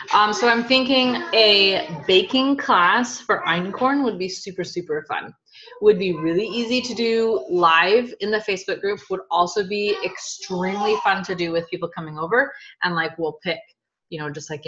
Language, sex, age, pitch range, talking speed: English, female, 20-39, 160-225 Hz, 180 wpm